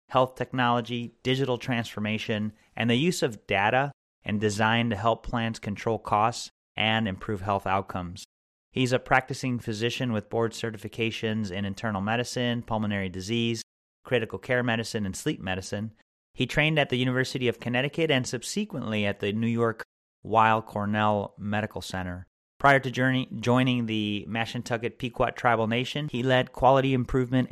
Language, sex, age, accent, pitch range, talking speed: English, male, 30-49, American, 105-125 Hz, 145 wpm